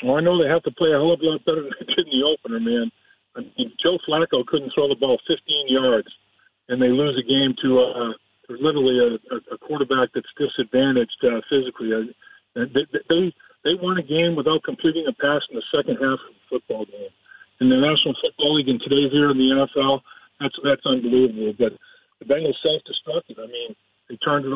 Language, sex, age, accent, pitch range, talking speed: English, male, 50-69, American, 130-165 Hz, 215 wpm